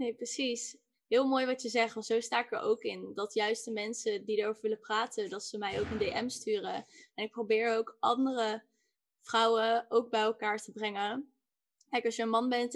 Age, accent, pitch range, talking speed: 10-29, Dutch, 220-255 Hz, 215 wpm